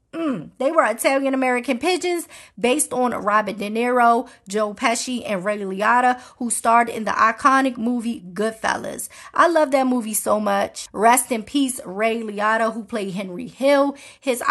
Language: English